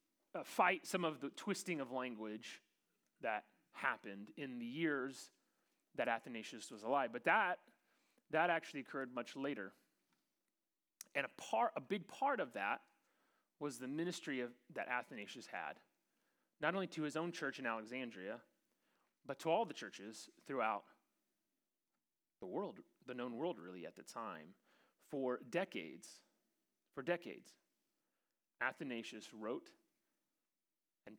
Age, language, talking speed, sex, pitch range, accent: 30-49, English, 130 wpm, male, 130-205 Hz, American